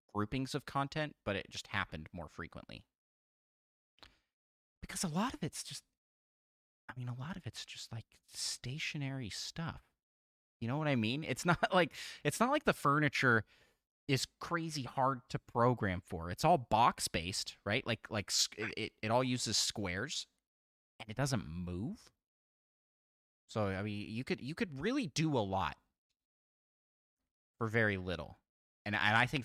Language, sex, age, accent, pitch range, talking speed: English, male, 30-49, American, 85-130 Hz, 155 wpm